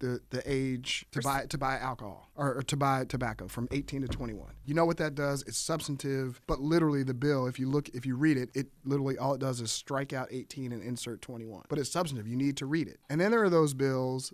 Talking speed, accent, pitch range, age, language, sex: 255 wpm, American, 120-140 Hz, 30-49, English, male